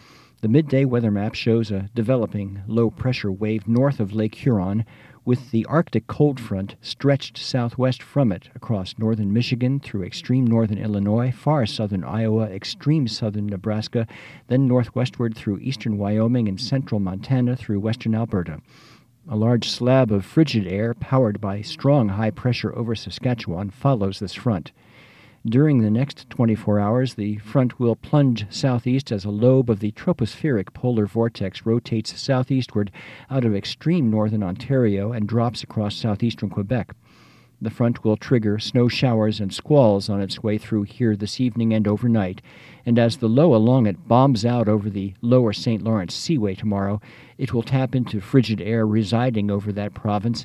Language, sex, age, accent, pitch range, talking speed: English, male, 50-69, American, 105-125 Hz, 160 wpm